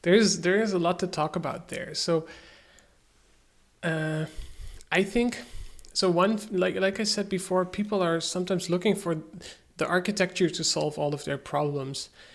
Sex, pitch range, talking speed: male, 155-185 Hz, 165 wpm